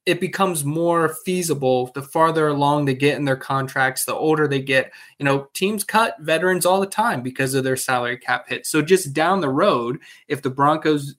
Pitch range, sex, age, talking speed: 130-155 Hz, male, 20-39, 205 wpm